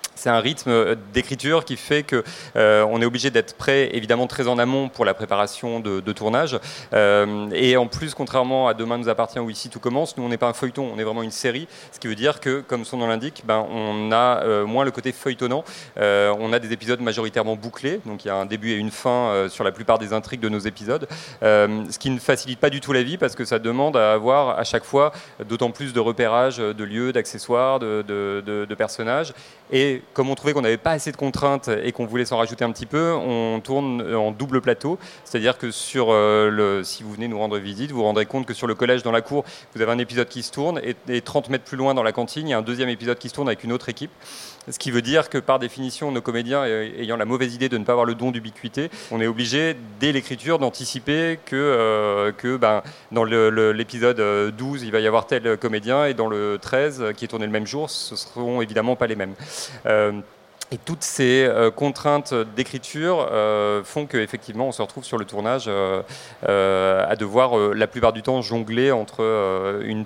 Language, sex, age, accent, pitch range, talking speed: French, male, 30-49, French, 110-135 Hz, 240 wpm